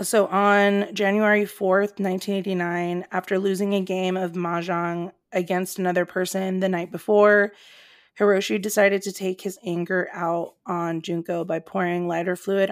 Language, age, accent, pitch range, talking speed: English, 30-49, American, 180-200 Hz, 140 wpm